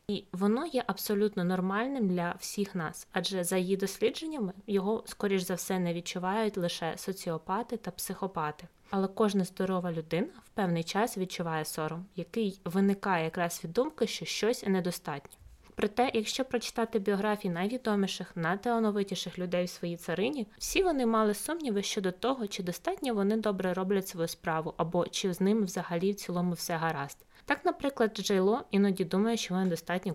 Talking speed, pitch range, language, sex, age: 155 wpm, 175-215 Hz, Ukrainian, female, 20-39